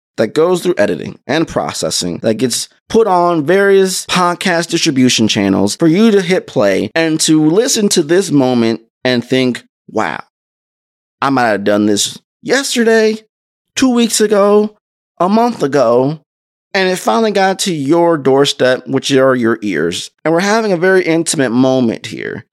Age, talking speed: 30-49, 155 wpm